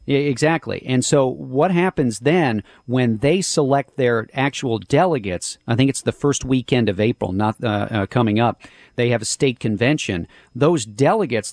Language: English